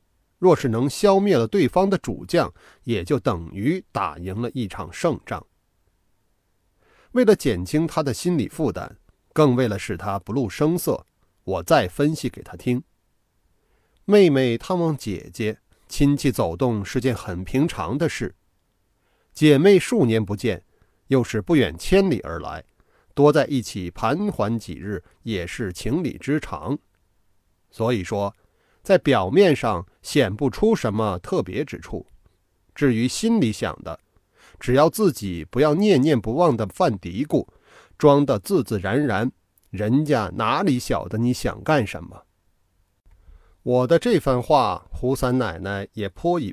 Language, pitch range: Chinese, 95-145 Hz